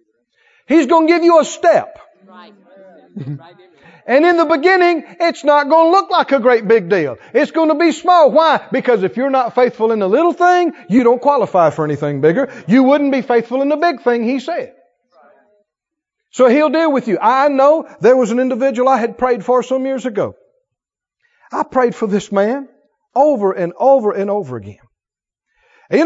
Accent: American